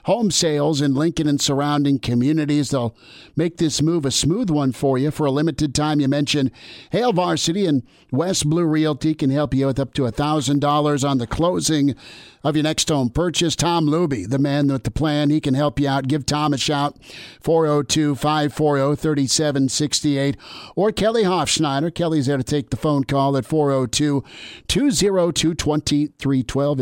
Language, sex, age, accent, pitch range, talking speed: English, male, 50-69, American, 135-155 Hz, 160 wpm